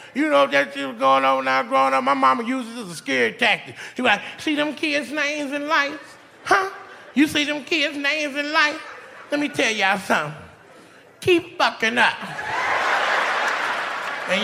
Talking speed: 190 wpm